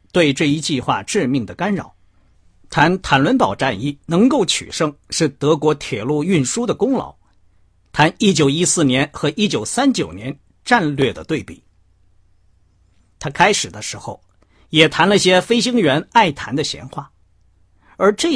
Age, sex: 50-69, male